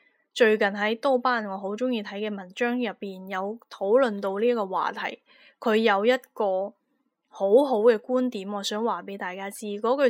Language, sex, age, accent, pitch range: Chinese, female, 20-39, native, 205-260 Hz